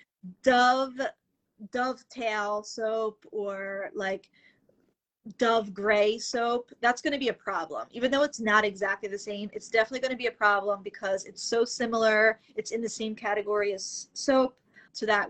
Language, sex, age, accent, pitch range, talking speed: English, female, 20-39, American, 205-245 Hz, 155 wpm